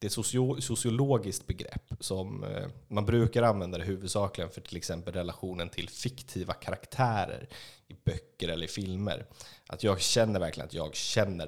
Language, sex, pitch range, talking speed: Swedish, male, 95-120 Hz, 155 wpm